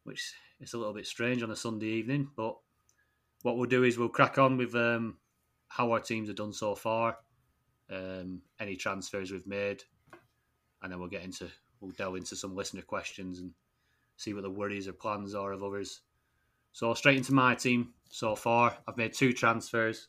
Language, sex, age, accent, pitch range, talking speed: English, male, 30-49, British, 95-115 Hz, 190 wpm